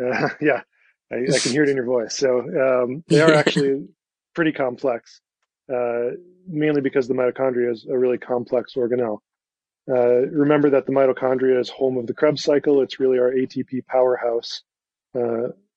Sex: male